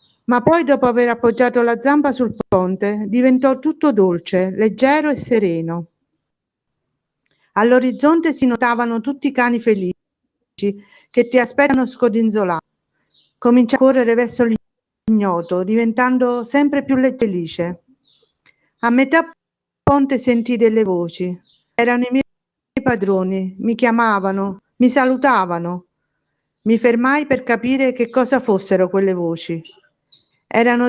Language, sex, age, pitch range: Italian, female, 50-69, 190-255 Hz